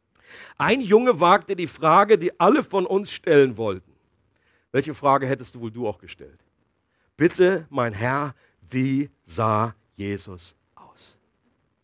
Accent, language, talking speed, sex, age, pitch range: German, German, 130 wpm, male, 50-69, 100-125 Hz